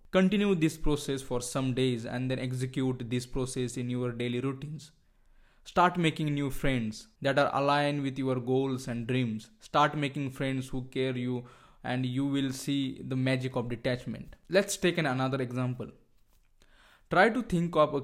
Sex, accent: male, Indian